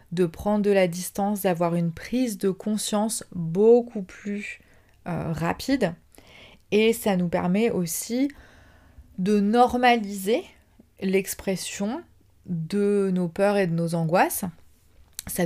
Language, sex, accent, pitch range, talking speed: French, female, French, 175-205 Hz, 115 wpm